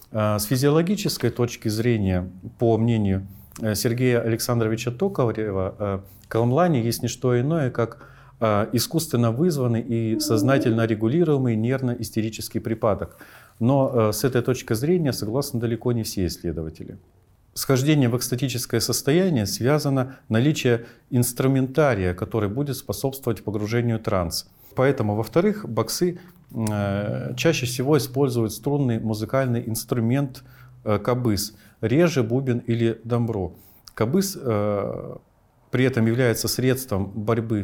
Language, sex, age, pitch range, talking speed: Russian, male, 40-59, 110-130 Hz, 105 wpm